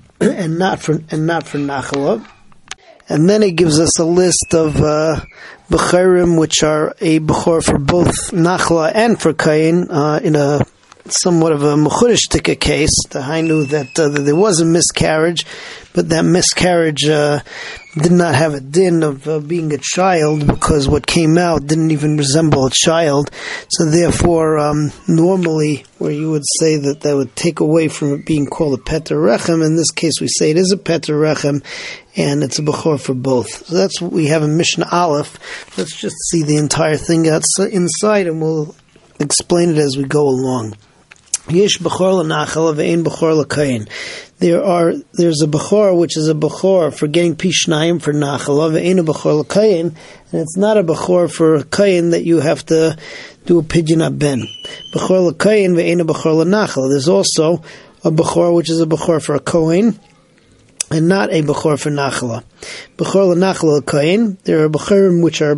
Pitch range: 150-175 Hz